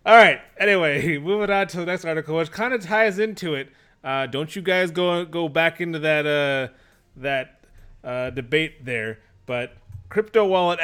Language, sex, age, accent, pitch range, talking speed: English, male, 30-49, American, 125-165 Hz, 170 wpm